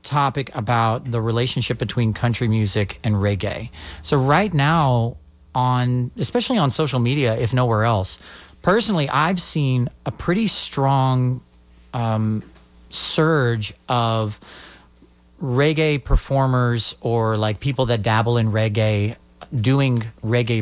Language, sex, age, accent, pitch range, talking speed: English, male, 40-59, American, 105-135 Hz, 115 wpm